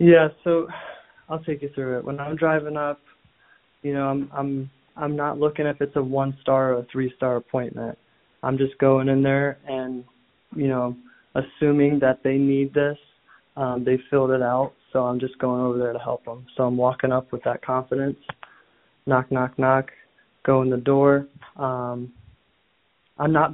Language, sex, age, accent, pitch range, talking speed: English, male, 20-39, American, 125-140 Hz, 185 wpm